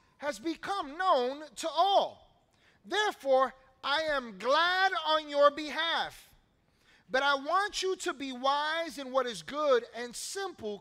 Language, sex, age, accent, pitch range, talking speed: English, male, 30-49, American, 225-295 Hz, 140 wpm